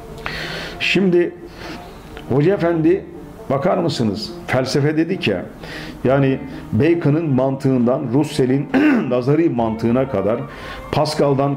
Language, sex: Turkish, male